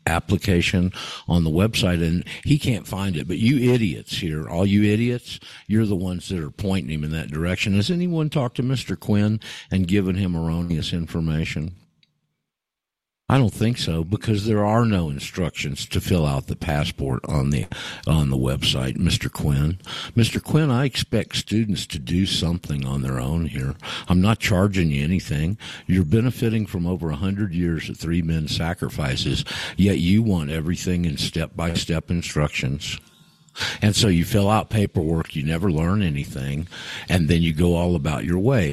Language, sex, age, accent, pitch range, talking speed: English, male, 50-69, American, 80-105 Hz, 170 wpm